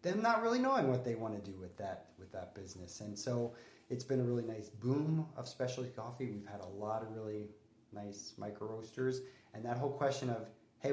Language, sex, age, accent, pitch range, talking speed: English, male, 30-49, American, 100-120 Hz, 220 wpm